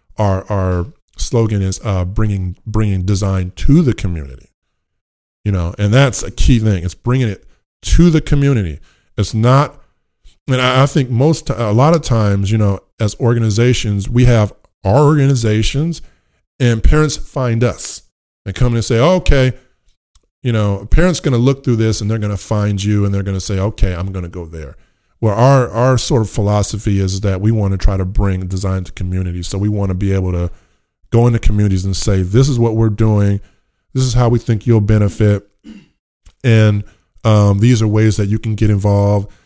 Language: English